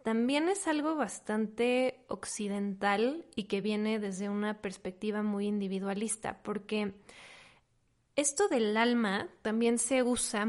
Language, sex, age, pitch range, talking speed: Spanish, female, 20-39, 200-235 Hz, 115 wpm